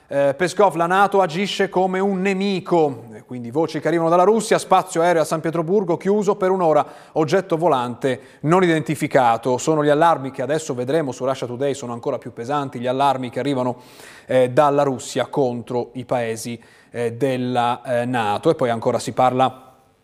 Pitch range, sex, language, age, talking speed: 130-180 Hz, male, Italian, 30-49, 160 wpm